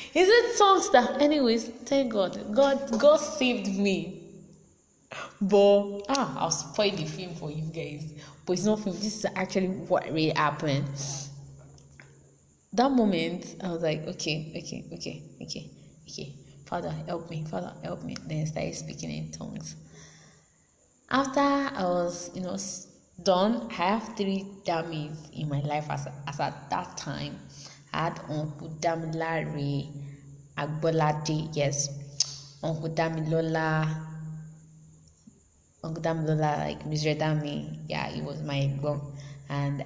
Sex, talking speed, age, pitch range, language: female, 140 wpm, 20-39, 145-185 Hz, English